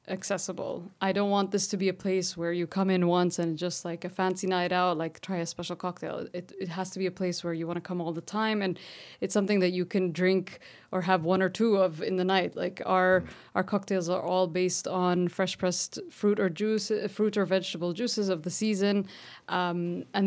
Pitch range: 180-195 Hz